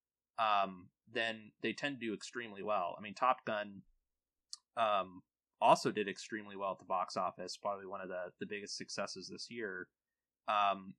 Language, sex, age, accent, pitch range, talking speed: English, male, 20-39, American, 95-120 Hz, 170 wpm